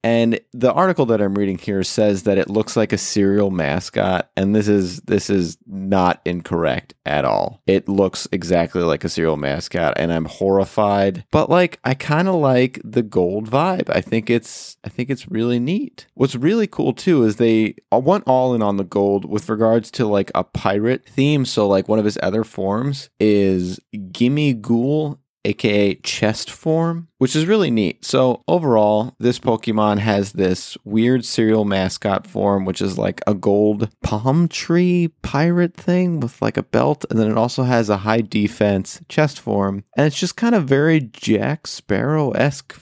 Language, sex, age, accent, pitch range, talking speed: English, male, 30-49, American, 100-140 Hz, 180 wpm